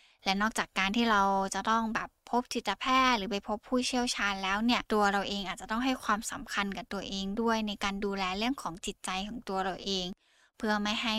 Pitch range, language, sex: 195-235 Hz, Thai, female